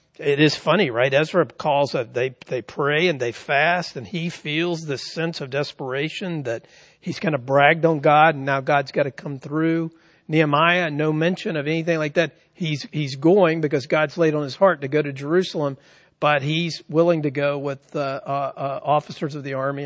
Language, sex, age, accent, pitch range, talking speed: English, male, 50-69, American, 135-170 Hz, 200 wpm